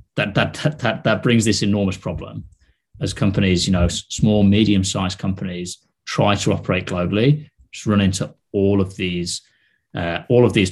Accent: British